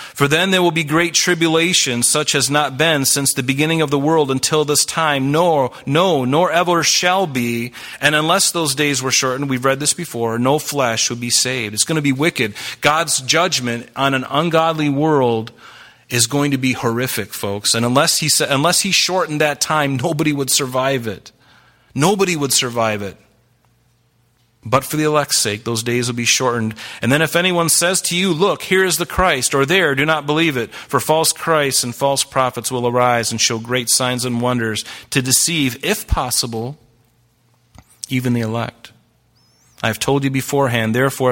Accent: American